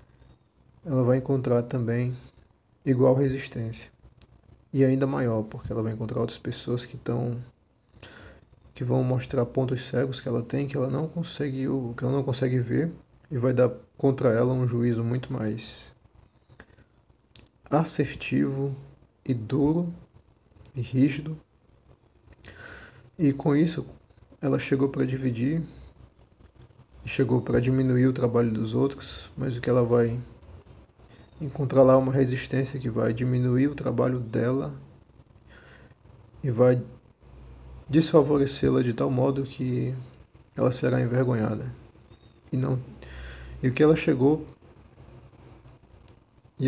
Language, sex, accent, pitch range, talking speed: Portuguese, male, Brazilian, 115-135 Hz, 120 wpm